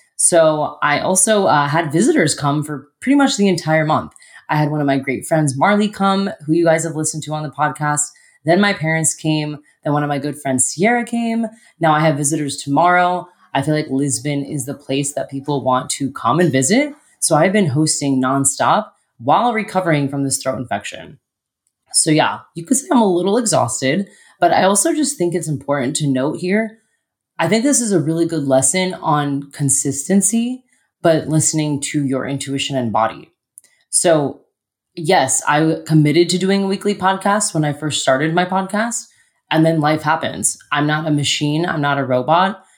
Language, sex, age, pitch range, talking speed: English, female, 20-39, 140-180 Hz, 190 wpm